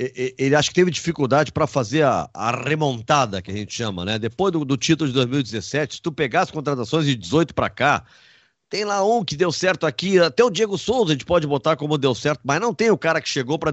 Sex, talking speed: male, 245 wpm